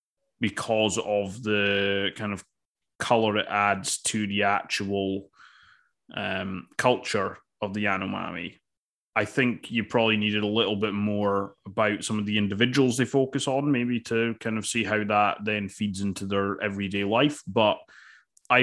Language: English